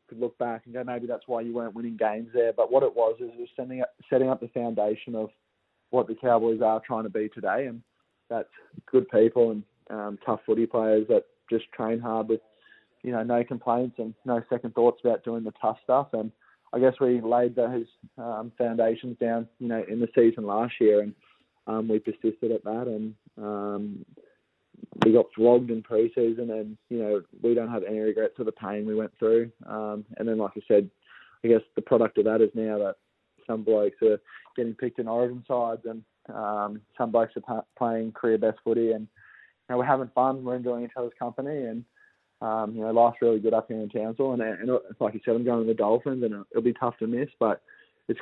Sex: male